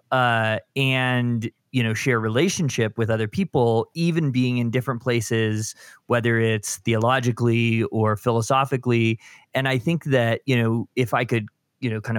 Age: 20-39